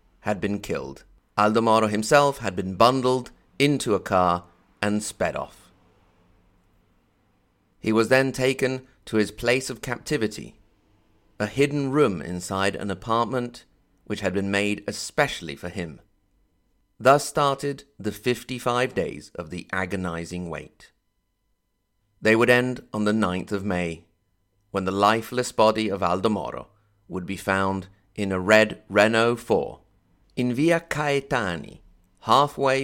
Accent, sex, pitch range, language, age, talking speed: British, male, 95-120 Hz, English, 30-49, 130 wpm